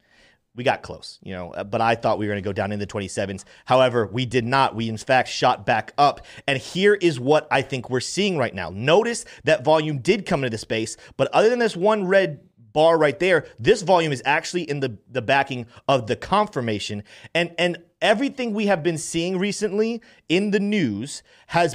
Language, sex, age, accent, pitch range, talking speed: English, male, 30-49, American, 130-185 Hz, 210 wpm